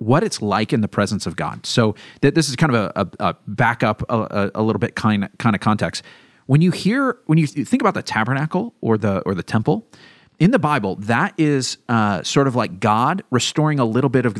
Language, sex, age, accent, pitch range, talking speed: English, male, 40-59, American, 115-160 Hz, 240 wpm